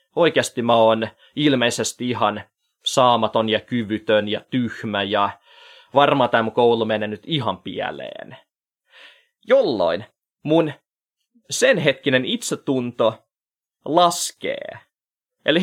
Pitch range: 115-180 Hz